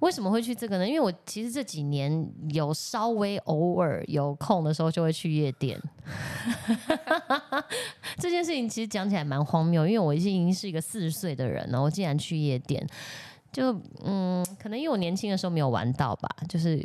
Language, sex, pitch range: Chinese, female, 150-215 Hz